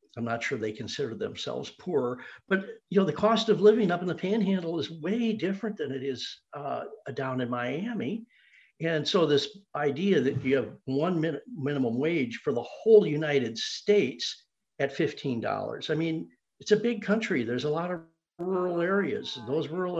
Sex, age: male, 60-79